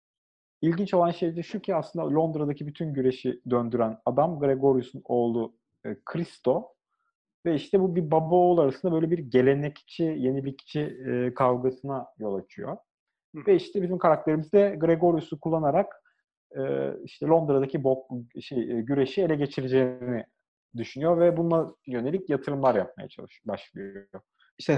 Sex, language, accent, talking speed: male, Turkish, native, 125 wpm